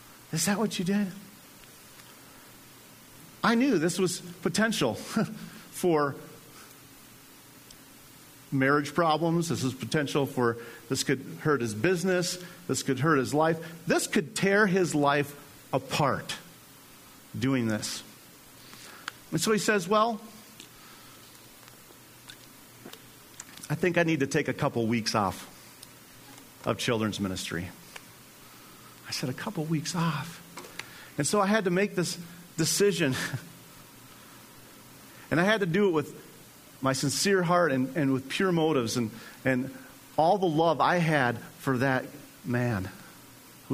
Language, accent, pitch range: English, American, 120-170 Hz